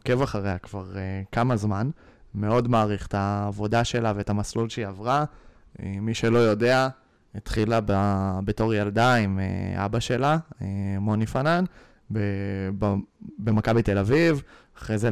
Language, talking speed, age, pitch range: Hebrew, 145 wpm, 20-39, 100-115 Hz